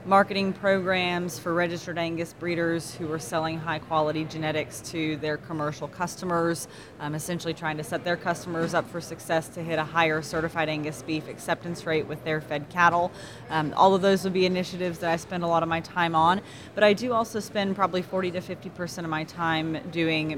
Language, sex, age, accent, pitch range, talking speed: English, female, 20-39, American, 160-185 Hz, 200 wpm